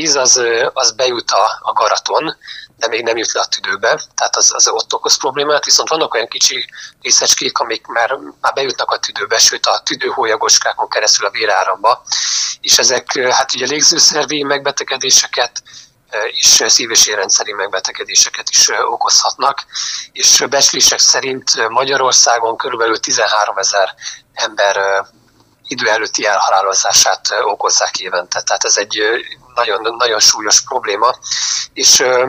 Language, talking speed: Hungarian, 130 wpm